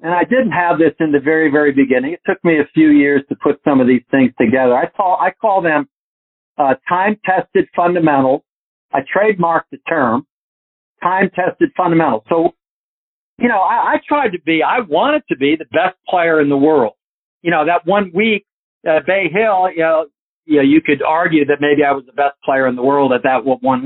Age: 50-69